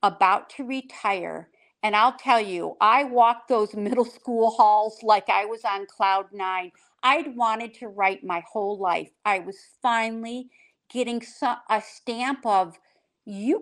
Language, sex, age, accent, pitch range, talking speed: English, female, 50-69, American, 200-255 Hz, 150 wpm